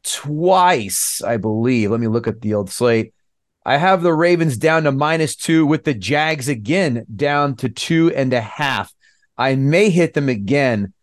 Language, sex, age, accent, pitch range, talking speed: English, male, 30-49, American, 120-160 Hz, 180 wpm